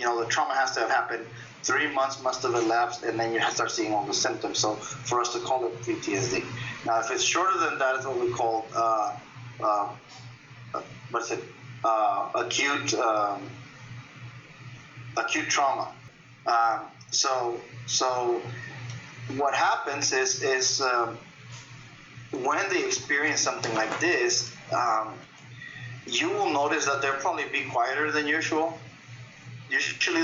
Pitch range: 120-155 Hz